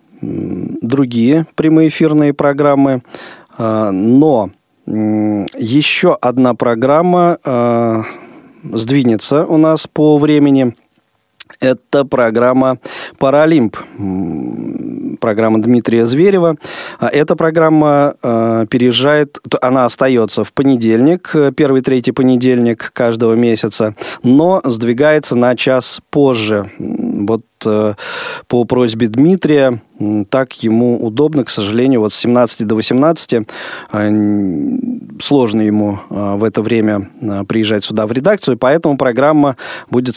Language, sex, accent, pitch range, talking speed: Russian, male, native, 110-140 Hz, 95 wpm